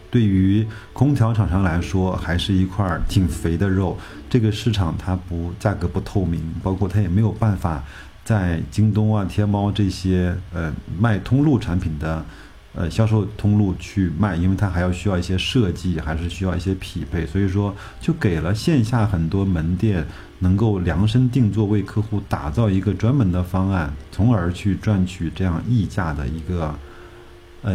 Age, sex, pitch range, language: 50-69, male, 85-105 Hz, Chinese